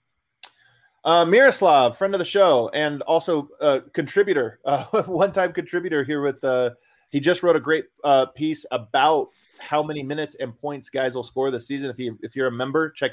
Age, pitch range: 20-39, 130-165 Hz